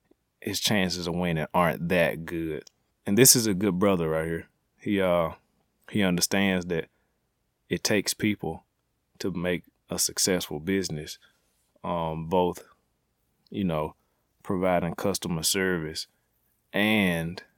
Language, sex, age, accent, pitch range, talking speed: English, male, 30-49, American, 85-100 Hz, 125 wpm